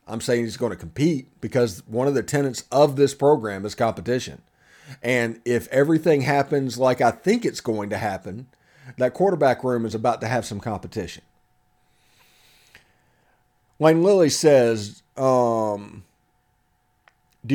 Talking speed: 140 wpm